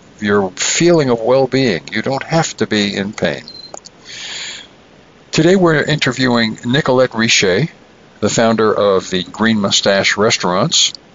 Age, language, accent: 60-79, English, American